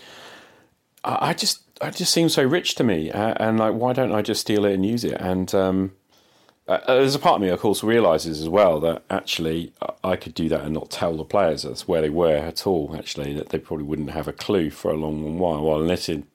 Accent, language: British, English